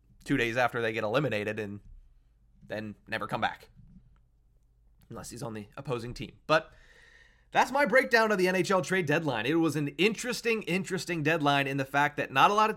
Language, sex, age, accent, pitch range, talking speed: English, male, 30-49, American, 120-185 Hz, 190 wpm